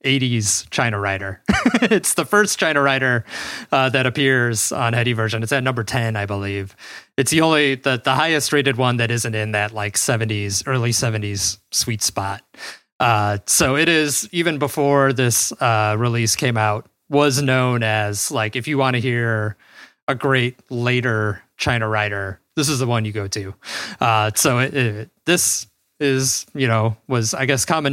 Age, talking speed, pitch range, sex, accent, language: 20-39, 175 wpm, 110-145 Hz, male, American, English